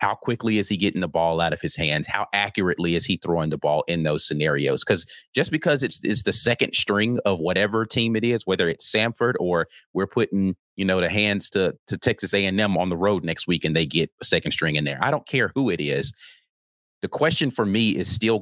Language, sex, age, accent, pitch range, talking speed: English, male, 30-49, American, 80-105 Hz, 240 wpm